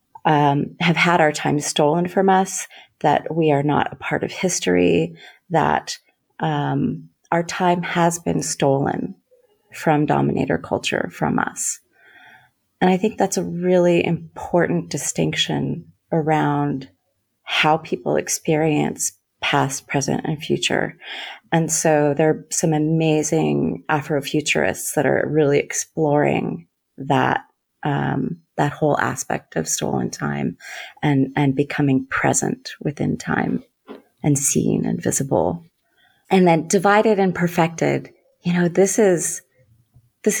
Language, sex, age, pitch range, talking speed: English, female, 30-49, 140-175 Hz, 125 wpm